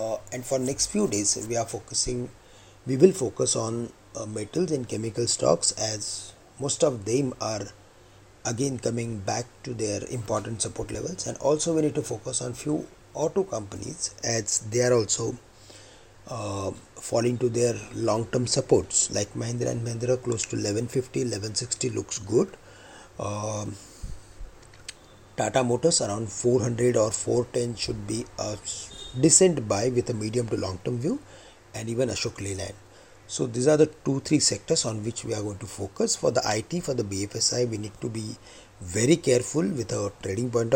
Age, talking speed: 30-49, 165 wpm